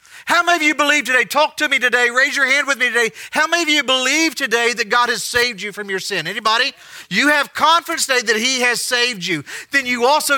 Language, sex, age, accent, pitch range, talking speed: English, male, 50-69, American, 210-260 Hz, 250 wpm